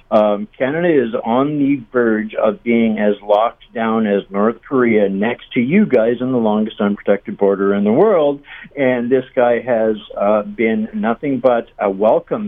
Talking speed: 175 wpm